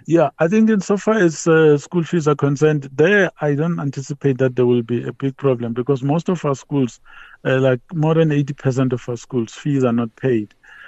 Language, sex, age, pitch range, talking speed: English, male, 50-69, 120-140 Hz, 225 wpm